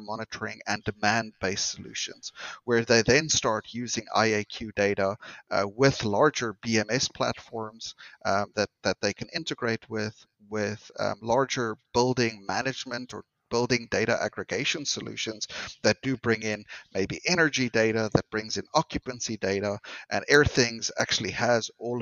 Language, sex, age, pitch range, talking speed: English, male, 30-49, 105-125 Hz, 135 wpm